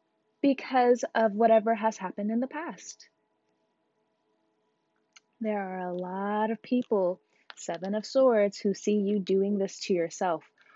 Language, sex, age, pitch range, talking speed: English, female, 20-39, 180-255 Hz, 135 wpm